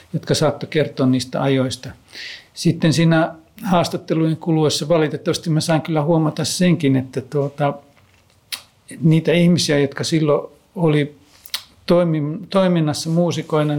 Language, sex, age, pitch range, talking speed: Finnish, male, 60-79, 135-160 Hz, 110 wpm